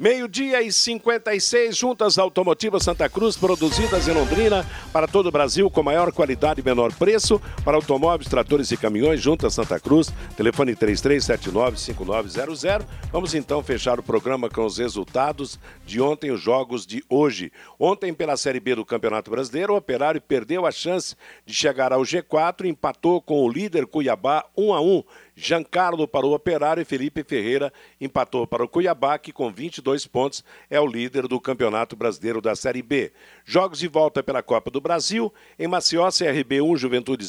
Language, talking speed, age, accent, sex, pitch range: Portuguese, 170 wpm, 60-79, Brazilian, male, 135-175 Hz